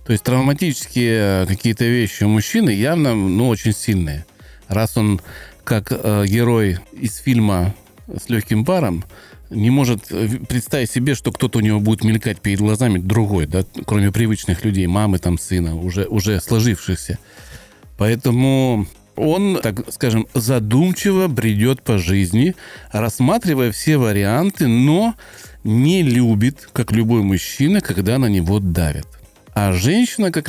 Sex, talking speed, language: male, 135 wpm, Russian